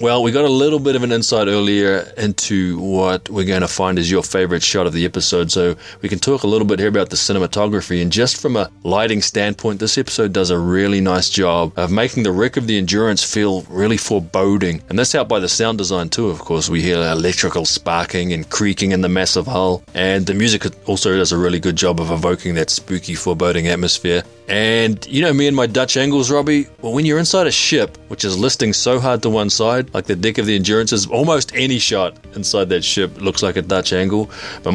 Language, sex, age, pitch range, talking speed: English, male, 20-39, 90-115 Hz, 230 wpm